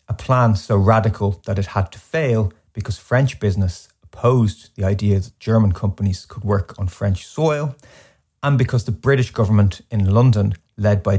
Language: English